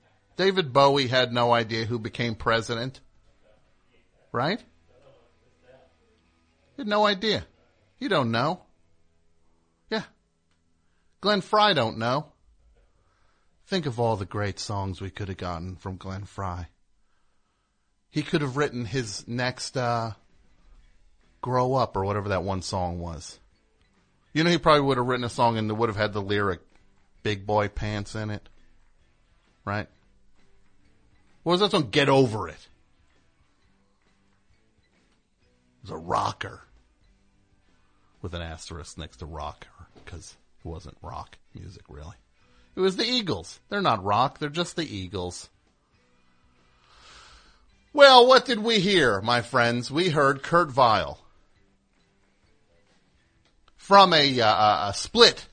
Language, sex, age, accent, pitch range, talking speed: English, male, 40-59, American, 85-125 Hz, 130 wpm